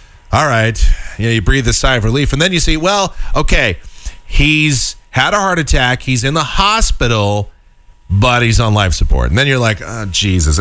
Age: 40-59